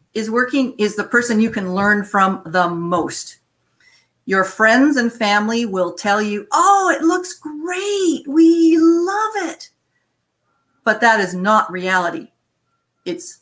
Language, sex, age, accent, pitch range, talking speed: English, female, 50-69, American, 180-245 Hz, 140 wpm